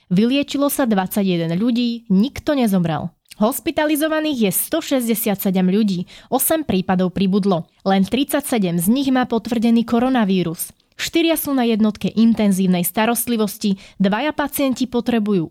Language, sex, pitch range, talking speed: Slovak, female, 195-255 Hz, 110 wpm